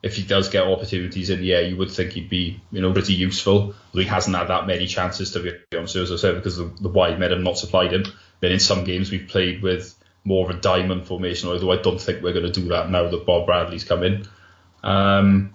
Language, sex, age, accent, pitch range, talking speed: English, male, 20-39, British, 90-100 Hz, 265 wpm